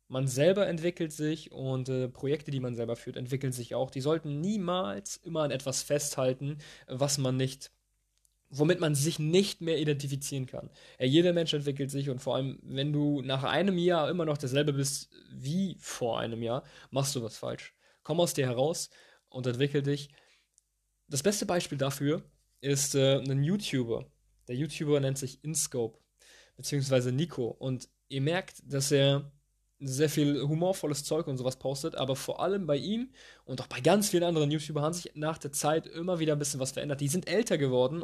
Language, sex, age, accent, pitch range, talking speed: German, male, 20-39, German, 130-155 Hz, 185 wpm